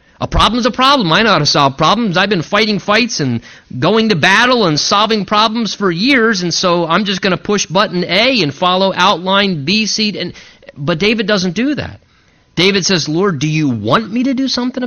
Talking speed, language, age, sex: 215 wpm, English, 30-49, male